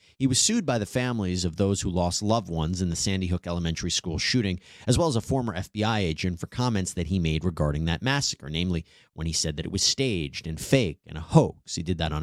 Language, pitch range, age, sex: English, 90-125 Hz, 30-49, male